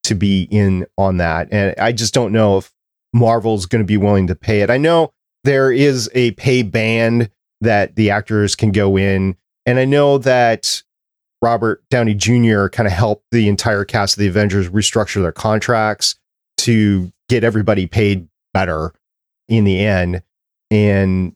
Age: 30-49